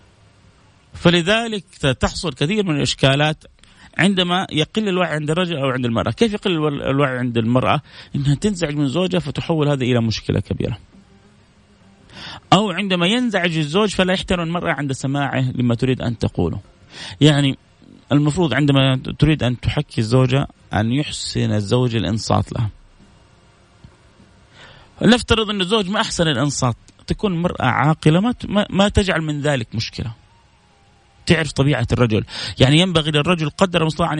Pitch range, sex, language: 120-170 Hz, male, Arabic